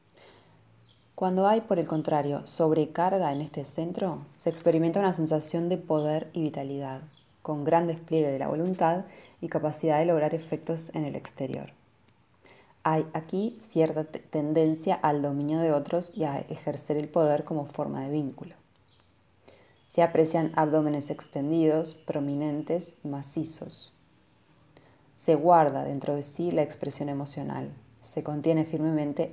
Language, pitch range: Spanish, 145-165 Hz